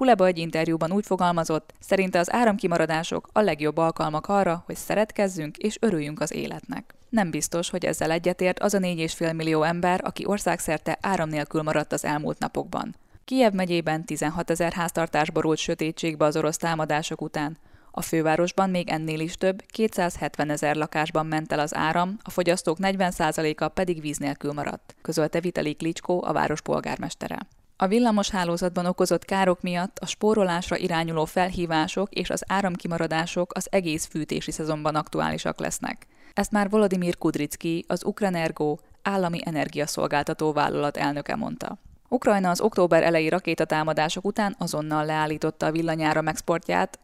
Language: Hungarian